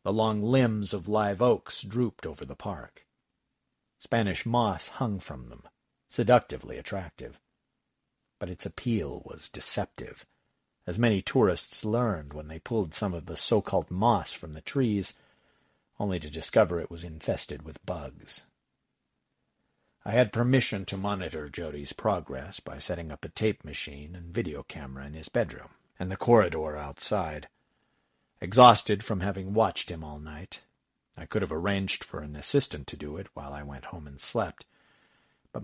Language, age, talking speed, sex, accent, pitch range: English, 50-69, 155 wpm, male, American, 80-110 Hz